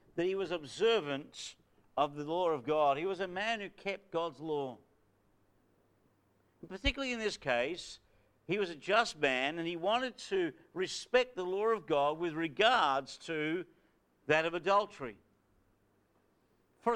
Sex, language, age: male, English, 50-69